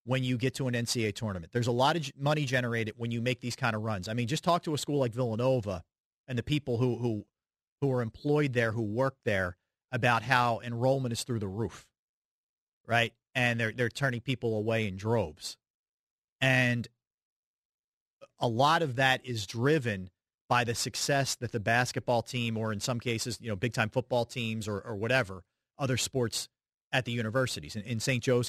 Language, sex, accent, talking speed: English, male, American, 195 wpm